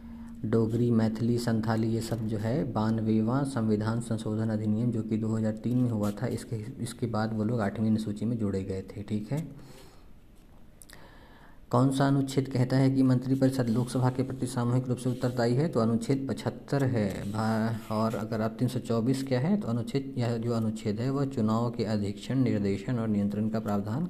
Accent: native